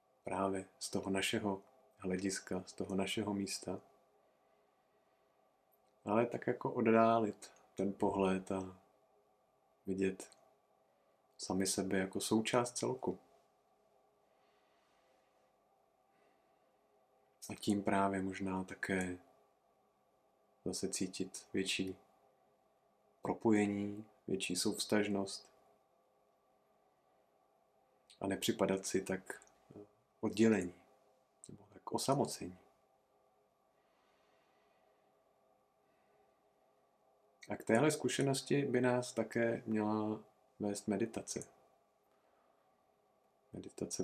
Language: Czech